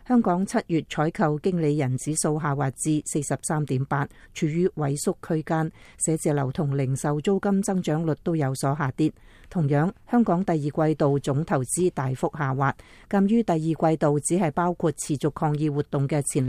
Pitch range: 140-175 Hz